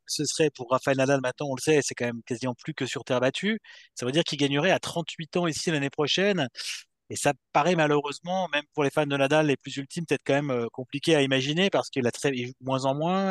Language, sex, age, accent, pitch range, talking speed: French, male, 30-49, French, 130-160 Hz, 260 wpm